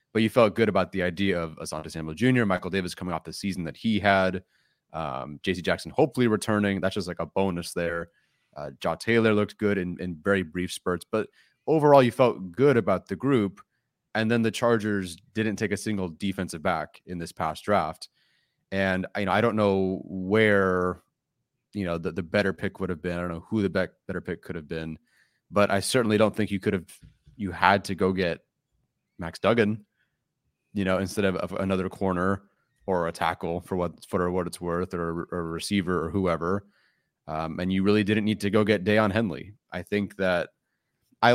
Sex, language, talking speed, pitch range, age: male, English, 205 wpm, 90-110 Hz, 30-49